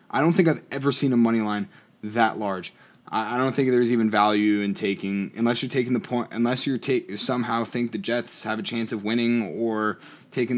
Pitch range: 100-130 Hz